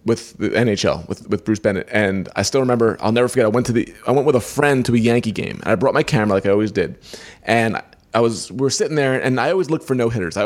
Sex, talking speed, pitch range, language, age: male, 285 wpm, 110-135 Hz, English, 30-49